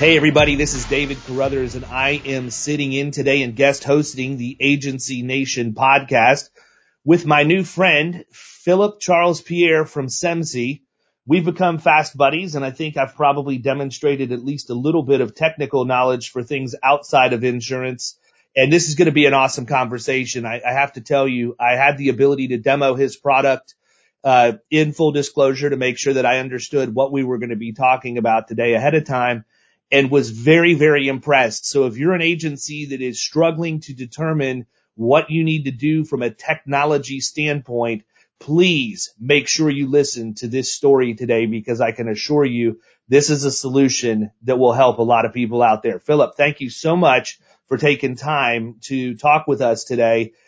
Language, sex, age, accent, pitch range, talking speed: English, male, 30-49, American, 125-150 Hz, 190 wpm